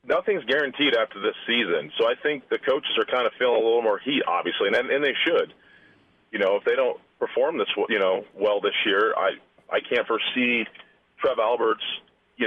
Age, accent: 40-59, American